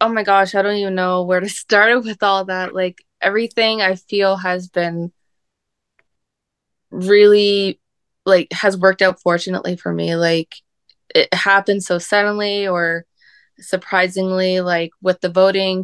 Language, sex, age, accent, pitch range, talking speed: English, female, 20-39, American, 165-190 Hz, 145 wpm